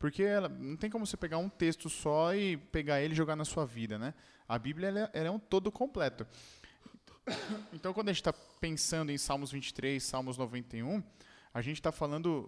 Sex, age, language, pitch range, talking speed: male, 20-39, Portuguese, 140-205 Hz, 205 wpm